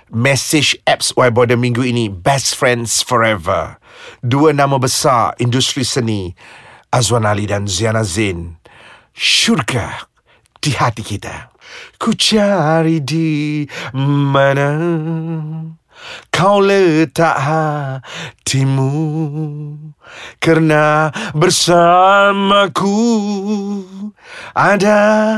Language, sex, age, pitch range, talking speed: Malay, male, 40-59, 125-190 Hz, 75 wpm